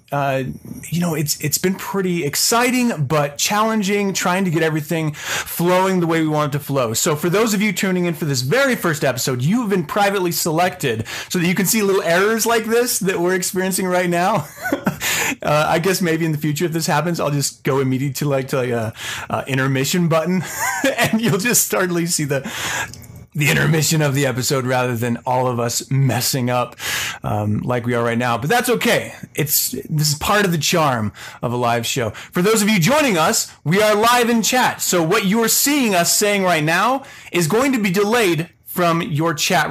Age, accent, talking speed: 30-49, American, 215 wpm